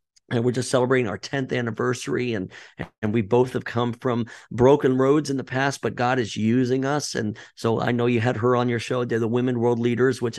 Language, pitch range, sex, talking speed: English, 115-130 Hz, male, 230 wpm